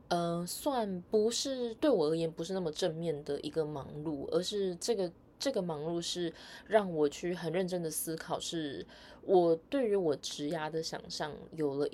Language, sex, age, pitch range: Chinese, female, 20-39, 155-200 Hz